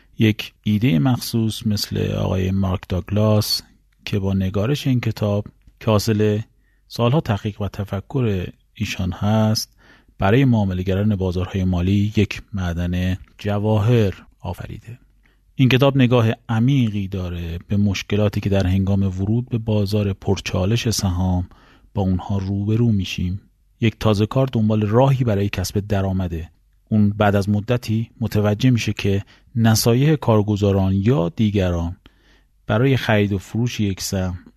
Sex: male